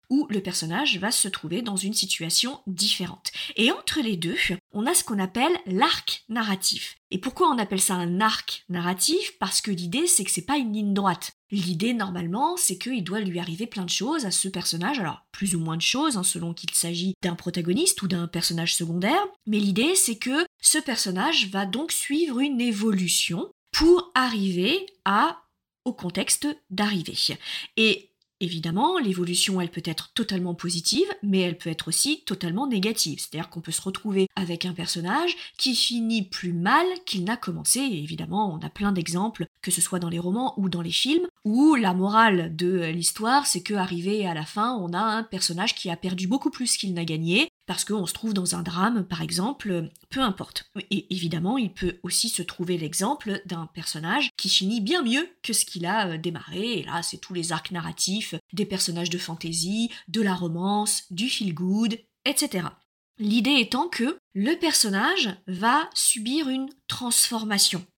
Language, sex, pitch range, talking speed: French, female, 180-235 Hz, 185 wpm